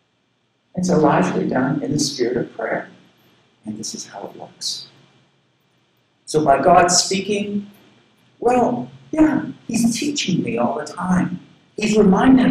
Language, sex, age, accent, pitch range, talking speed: English, male, 50-69, American, 140-225 Hz, 140 wpm